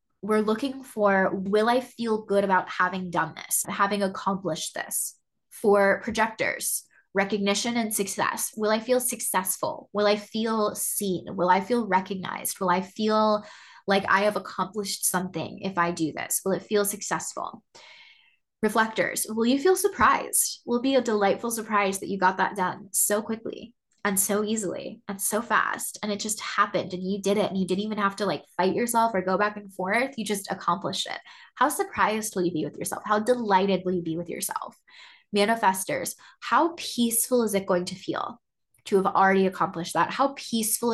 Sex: female